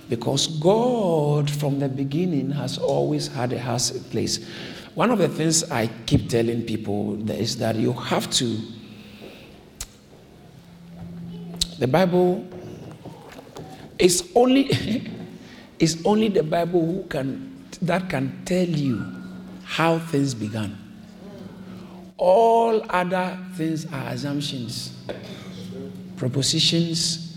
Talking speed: 100 wpm